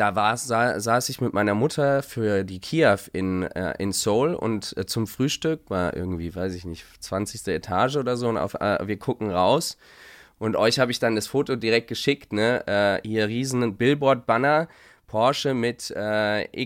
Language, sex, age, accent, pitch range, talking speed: German, male, 20-39, German, 100-130 Hz, 170 wpm